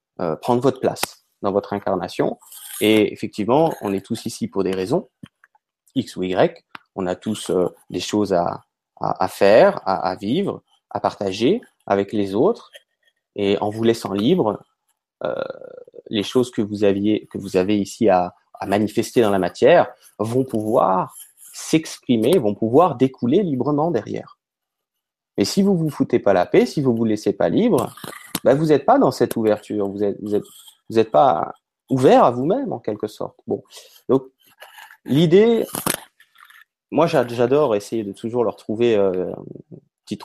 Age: 30-49